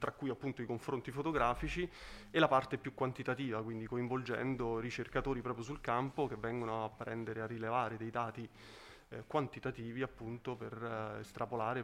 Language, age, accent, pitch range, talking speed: Italian, 20-39, native, 115-135 Hz, 155 wpm